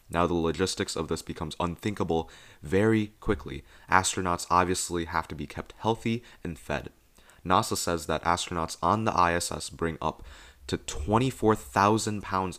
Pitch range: 80-95 Hz